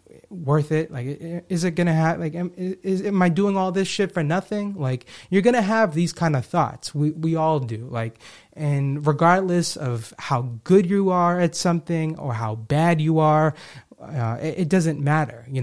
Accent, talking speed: American, 195 wpm